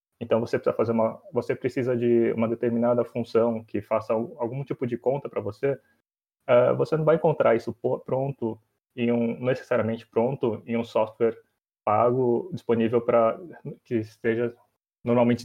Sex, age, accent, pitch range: male, 20-39, Brazilian, 115-135 Hz